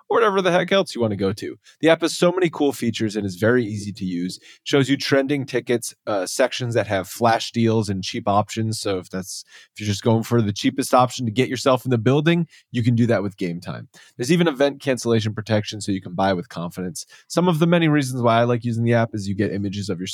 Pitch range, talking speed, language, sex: 105-140 Hz, 265 wpm, English, male